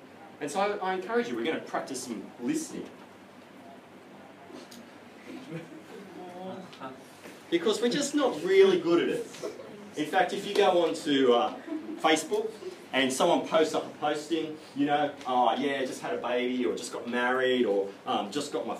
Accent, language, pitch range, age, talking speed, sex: Australian, English, 145-240 Hz, 30-49, 170 wpm, male